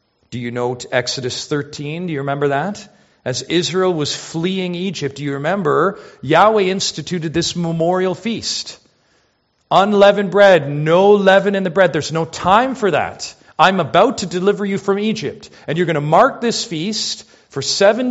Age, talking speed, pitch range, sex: 40-59, 165 wpm, 135-190 Hz, male